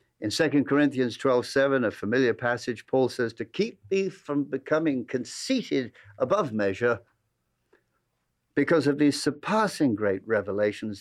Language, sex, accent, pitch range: English, male, British, 110-145 Hz